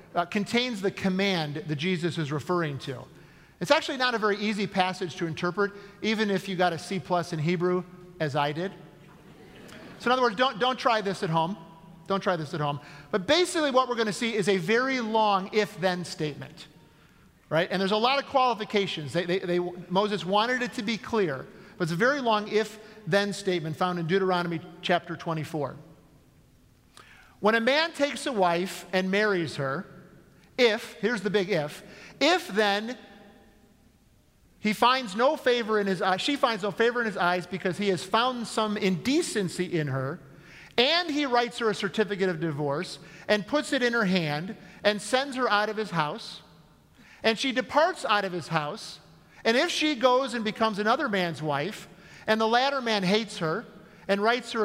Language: English